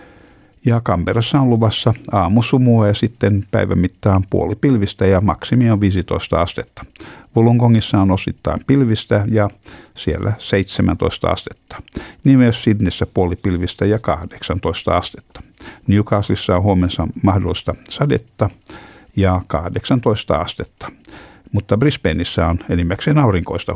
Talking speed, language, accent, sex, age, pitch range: 110 wpm, Finnish, native, male, 60-79, 90-110 Hz